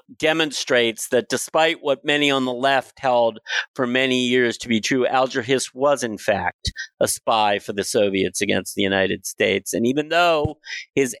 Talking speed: 175 wpm